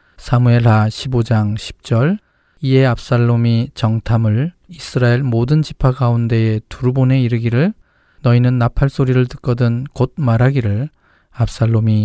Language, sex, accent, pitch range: Korean, male, native, 115-135 Hz